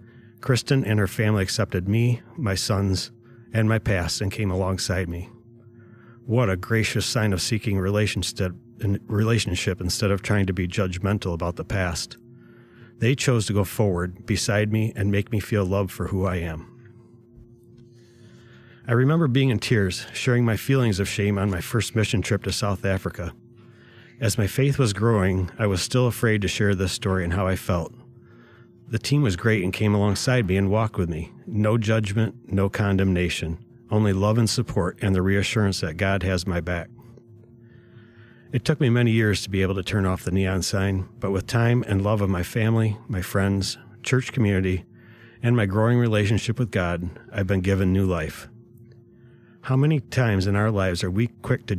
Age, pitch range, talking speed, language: 30-49, 95-115 Hz, 180 wpm, English